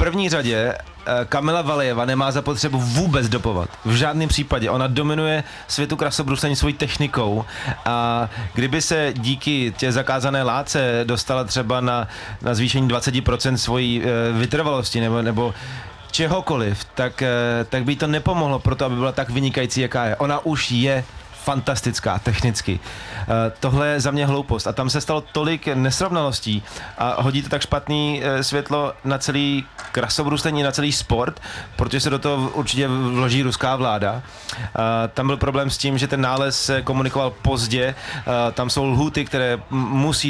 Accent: native